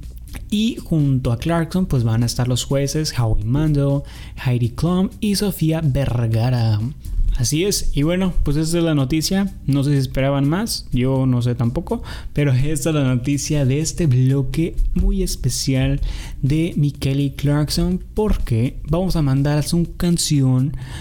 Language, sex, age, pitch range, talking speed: Spanish, male, 20-39, 125-165 Hz, 155 wpm